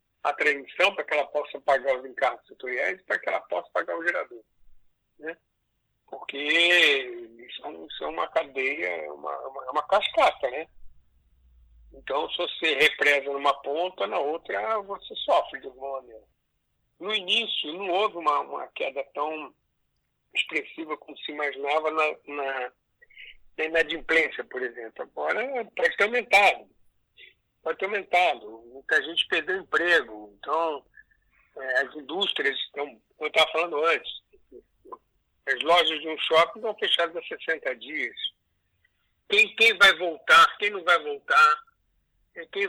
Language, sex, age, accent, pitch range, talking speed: Portuguese, male, 60-79, Brazilian, 145-245 Hz, 135 wpm